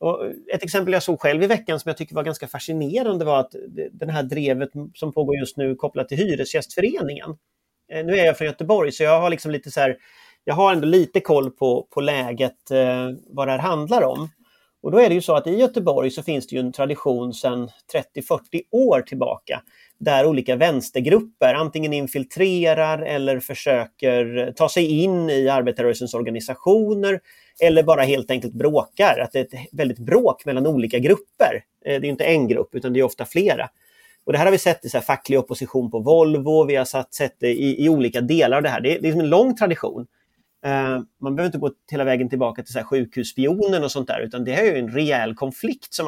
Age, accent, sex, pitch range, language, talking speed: 30-49, Swedish, male, 130-175 Hz, English, 205 wpm